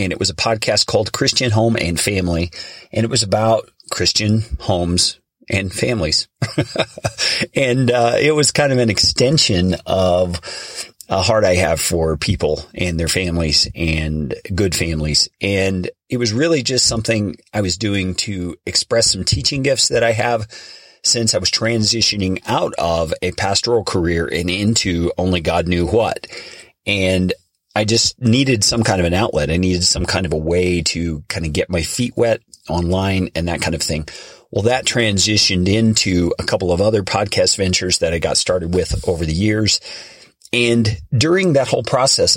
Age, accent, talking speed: 30-49, American, 175 wpm